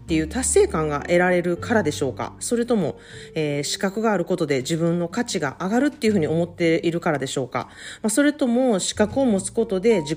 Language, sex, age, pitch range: Japanese, female, 40-59, 150-220 Hz